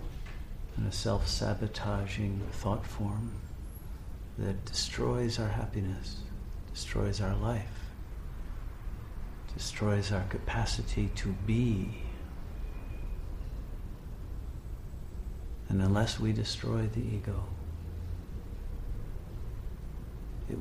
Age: 50-69